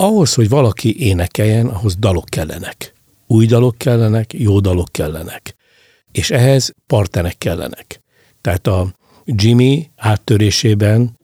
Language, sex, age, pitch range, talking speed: Hungarian, male, 60-79, 100-120 Hz, 110 wpm